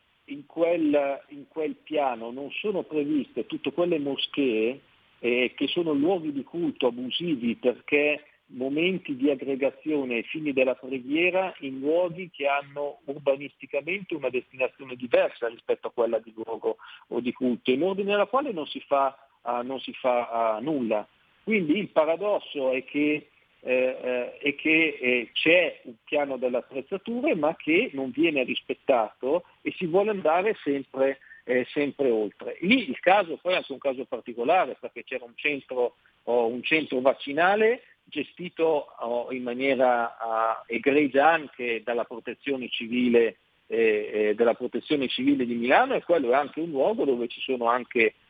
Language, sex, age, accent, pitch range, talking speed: Italian, male, 50-69, native, 125-175 Hz, 155 wpm